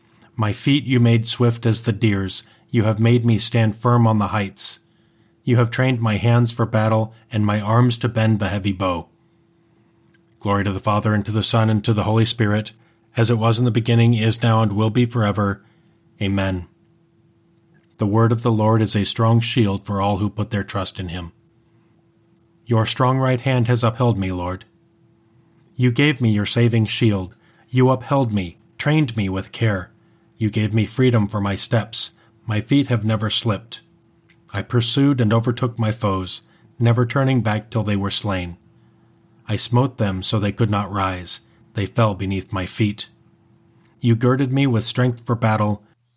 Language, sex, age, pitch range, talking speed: English, male, 30-49, 105-120 Hz, 185 wpm